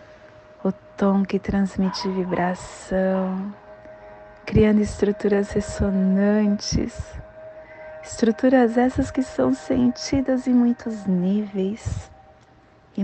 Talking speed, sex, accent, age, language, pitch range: 75 wpm, female, Brazilian, 20-39, Portuguese, 160-210 Hz